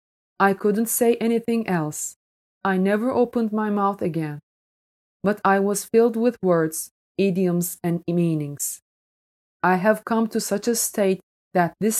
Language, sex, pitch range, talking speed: English, female, 170-215 Hz, 145 wpm